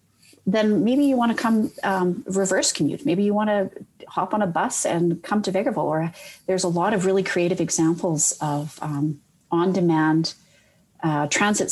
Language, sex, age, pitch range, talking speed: English, female, 40-59, 155-185 Hz, 170 wpm